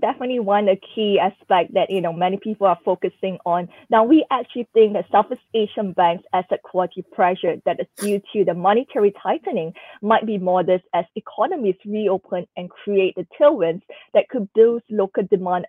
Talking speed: 175 wpm